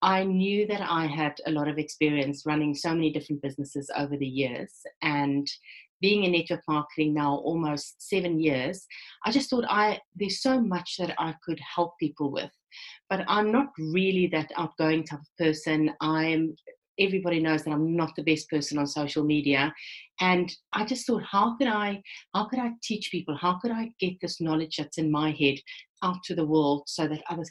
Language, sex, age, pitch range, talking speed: English, female, 30-49, 155-205 Hz, 190 wpm